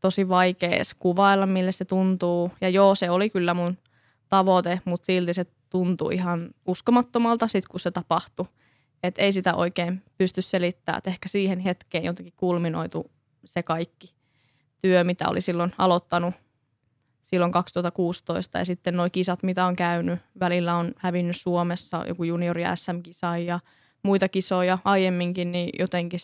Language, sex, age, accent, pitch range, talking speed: Finnish, female, 20-39, native, 170-185 Hz, 140 wpm